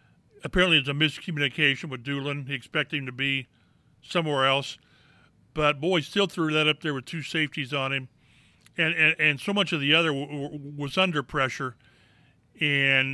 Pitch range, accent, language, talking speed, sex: 145-180 Hz, American, English, 180 wpm, male